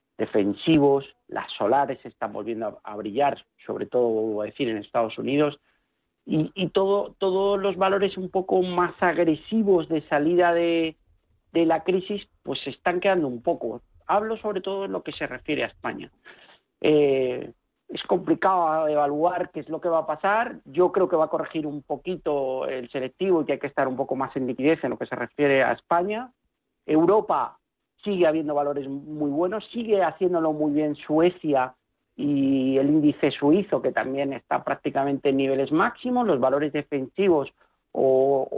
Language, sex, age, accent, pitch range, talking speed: Spanish, male, 50-69, Spanish, 140-180 Hz, 170 wpm